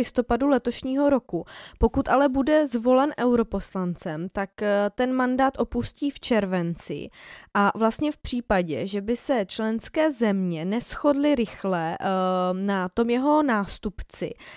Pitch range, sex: 200-245 Hz, female